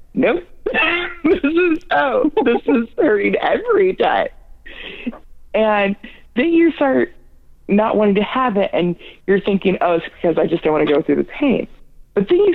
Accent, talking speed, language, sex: American, 170 wpm, English, female